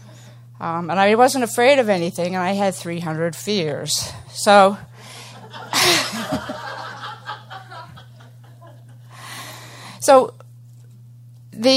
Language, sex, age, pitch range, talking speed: English, female, 50-69, 125-200 Hz, 75 wpm